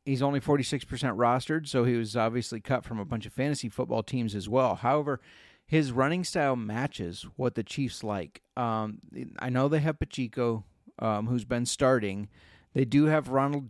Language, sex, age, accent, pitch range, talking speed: English, male, 40-59, American, 115-140 Hz, 180 wpm